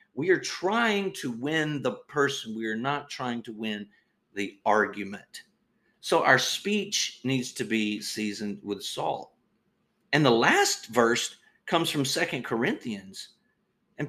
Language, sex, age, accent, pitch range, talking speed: English, male, 40-59, American, 120-195 Hz, 140 wpm